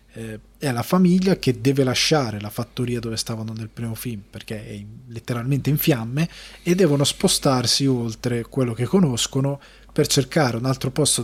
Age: 20-39